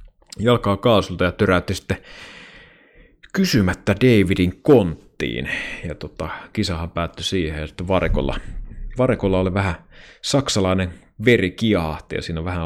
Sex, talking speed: male, 115 wpm